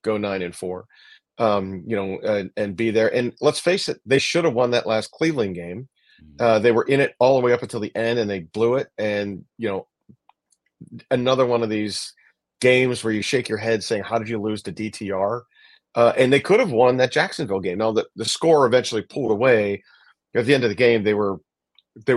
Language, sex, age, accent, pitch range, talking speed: English, male, 40-59, American, 105-130 Hz, 225 wpm